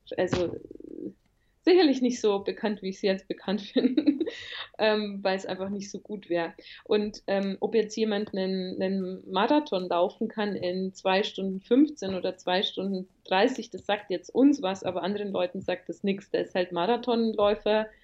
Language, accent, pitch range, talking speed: German, German, 195-250 Hz, 170 wpm